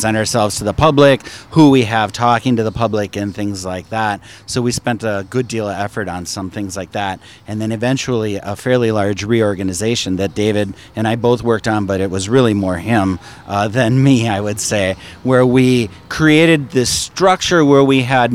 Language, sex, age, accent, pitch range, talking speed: English, male, 40-59, American, 105-130 Hz, 205 wpm